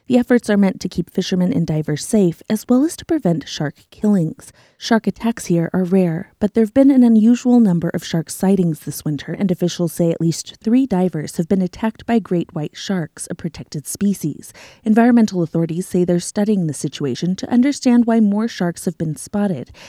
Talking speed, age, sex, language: 200 wpm, 30-49, female, English